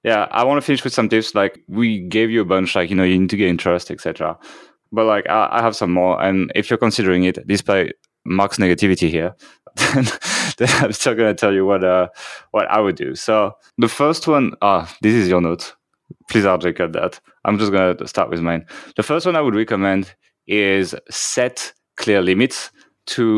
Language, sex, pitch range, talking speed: English, male, 95-110 Hz, 215 wpm